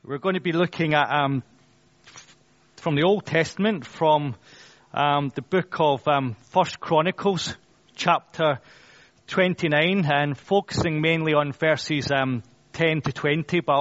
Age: 30-49